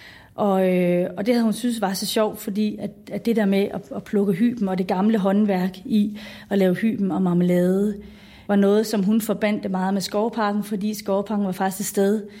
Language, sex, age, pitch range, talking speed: Danish, female, 30-49, 185-215 Hz, 195 wpm